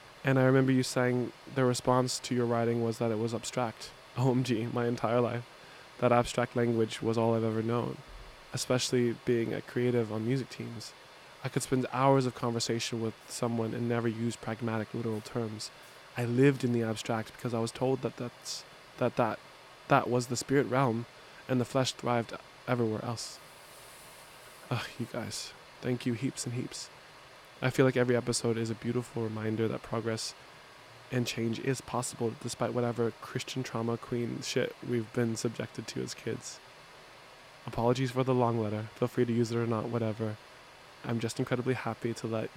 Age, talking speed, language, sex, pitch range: 20-39, 175 wpm, English, male, 115-125 Hz